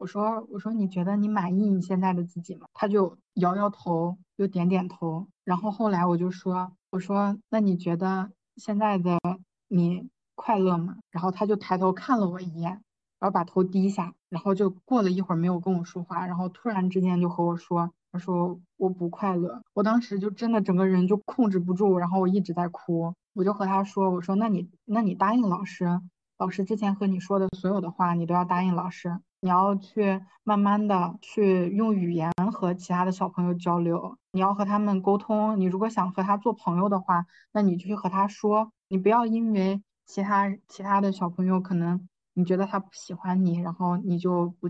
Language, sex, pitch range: Chinese, female, 180-200 Hz